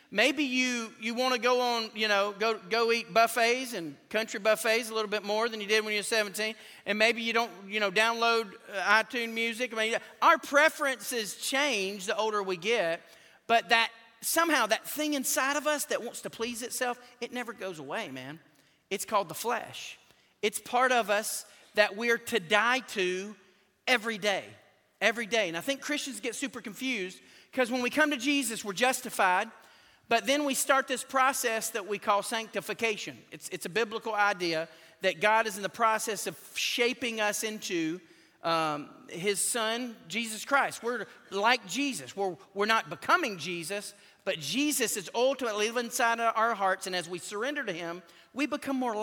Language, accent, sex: English, American, male